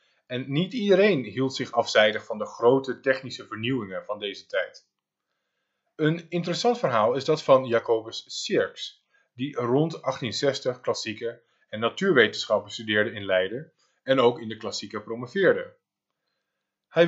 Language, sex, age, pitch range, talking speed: Dutch, male, 20-39, 110-155 Hz, 135 wpm